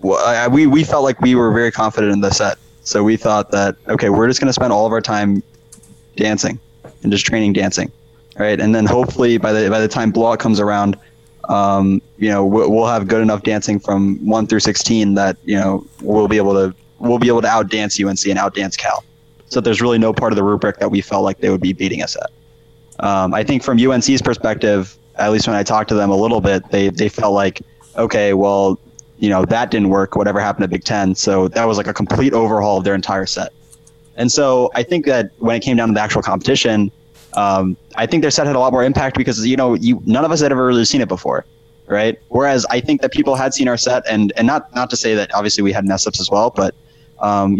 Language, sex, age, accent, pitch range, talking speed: English, male, 20-39, American, 100-120 Hz, 245 wpm